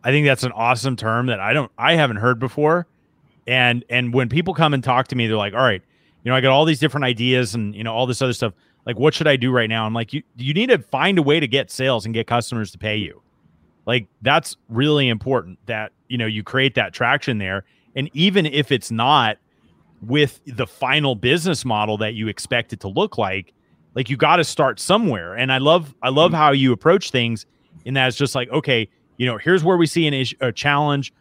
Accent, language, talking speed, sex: American, English, 240 wpm, male